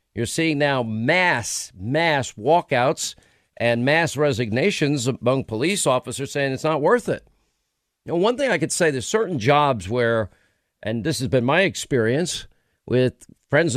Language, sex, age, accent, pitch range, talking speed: English, male, 50-69, American, 120-165 Hz, 155 wpm